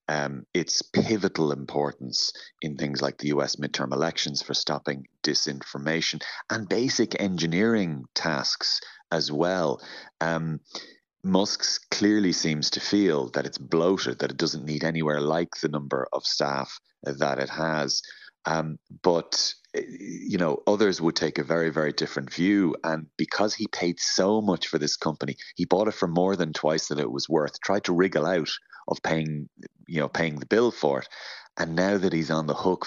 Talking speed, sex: 170 wpm, male